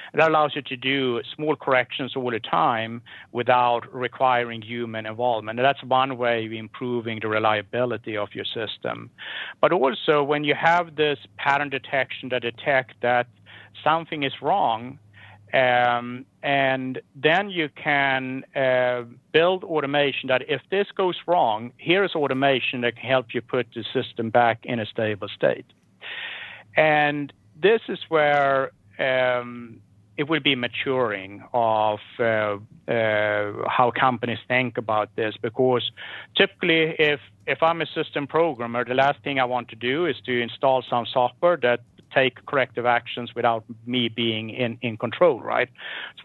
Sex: male